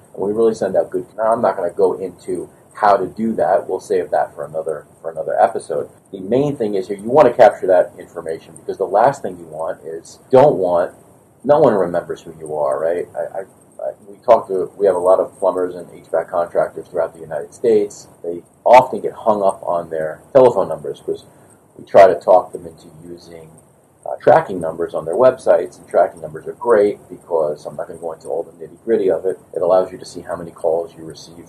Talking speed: 230 wpm